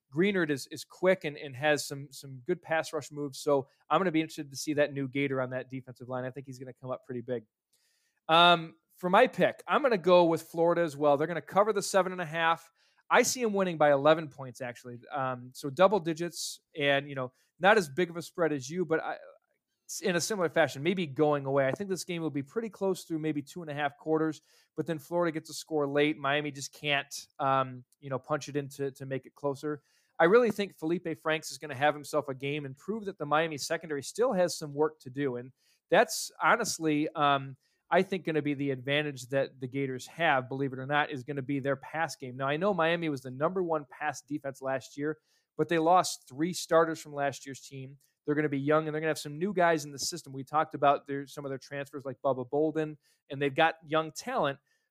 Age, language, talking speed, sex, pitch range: 20-39, English, 245 wpm, male, 140-165 Hz